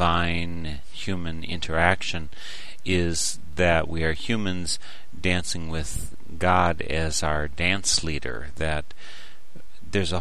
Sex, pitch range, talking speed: male, 80-95 Hz, 100 wpm